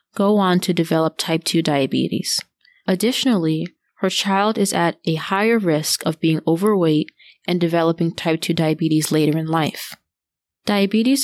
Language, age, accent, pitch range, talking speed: English, 30-49, American, 165-215 Hz, 145 wpm